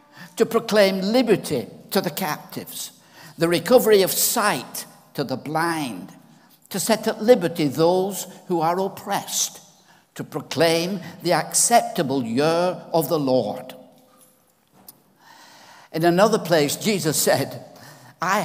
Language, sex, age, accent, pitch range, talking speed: English, male, 60-79, British, 150-200 Hz, 115 wpm